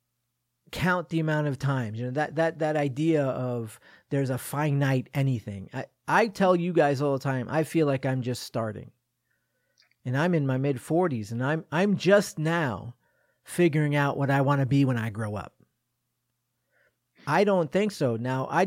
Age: 40-59